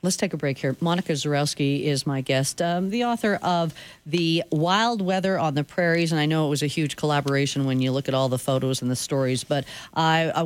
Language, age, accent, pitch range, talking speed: English, 40-59, American, 145-185 Hz, 230 wpm